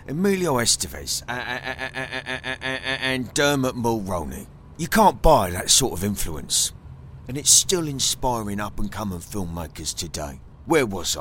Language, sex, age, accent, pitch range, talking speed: English, male, 30-49, British, 80-130 Hz, 155 wpm